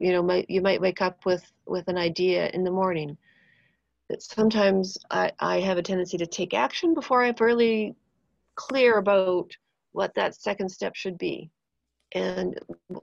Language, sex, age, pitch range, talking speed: English, female, 40-59, 175-220 Hz, 165 wpm